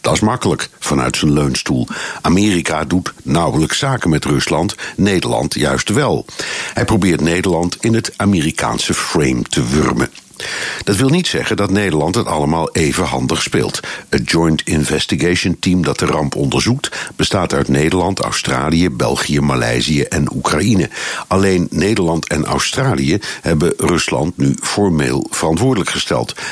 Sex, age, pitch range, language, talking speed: male, 60-79, 75-100 Hz, Dutch, 140 wpm